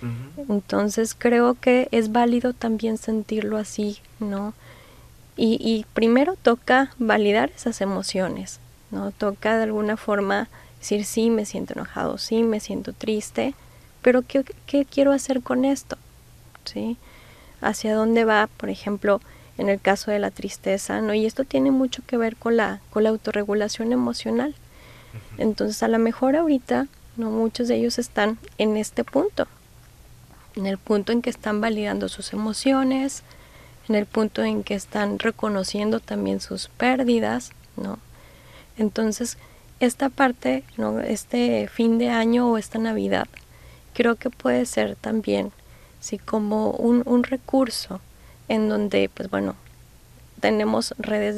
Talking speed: 140 wpm